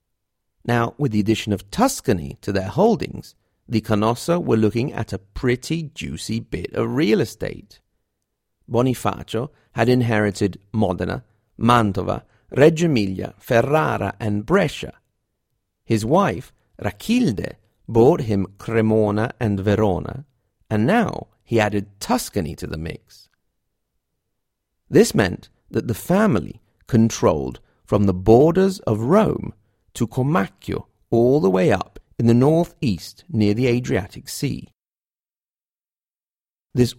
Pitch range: 100-125 Hz